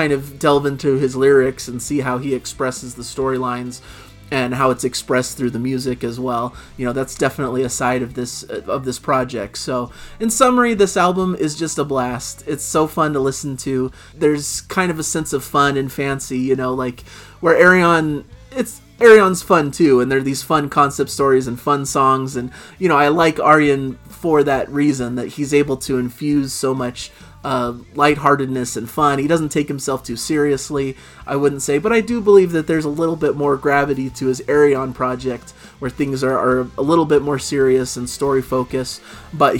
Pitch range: 130-150 Hz